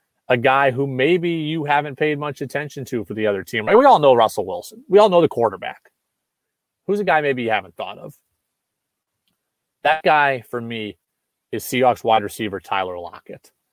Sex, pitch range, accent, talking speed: male, 125-160 Hz, American, 190 wpm